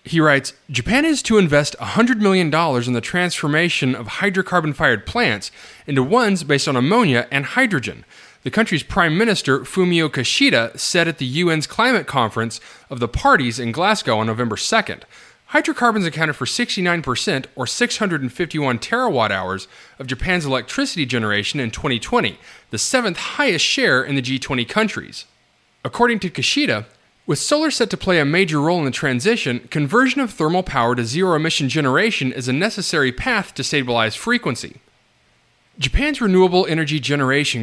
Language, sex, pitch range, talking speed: English, male, 125-190 Hz, 155 wpm